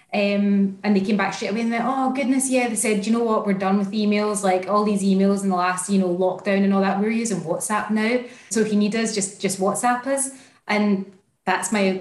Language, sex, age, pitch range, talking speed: English, female, 20-39, 190-220 Hz, 250 wpm